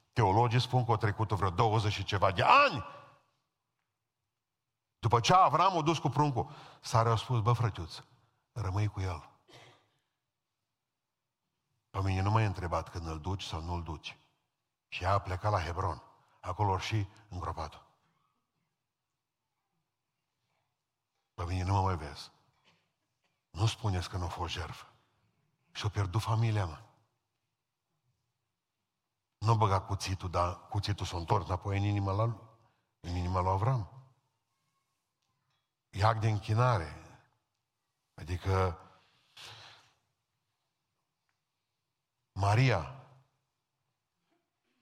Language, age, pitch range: Romanian, 50-69, 95-130 Hz